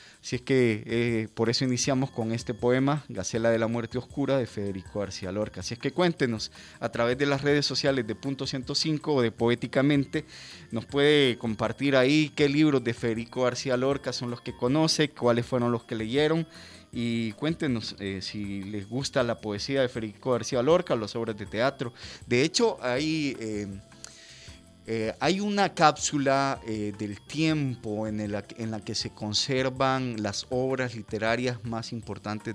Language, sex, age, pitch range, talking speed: Spanish, male, 30-49, 100-130 Hz, 175 wpm